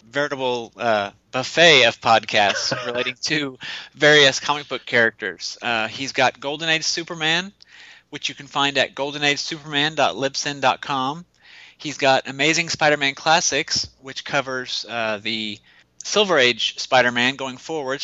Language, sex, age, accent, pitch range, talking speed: English, male, 30-49, American, 120-145 Hz, 125 wpm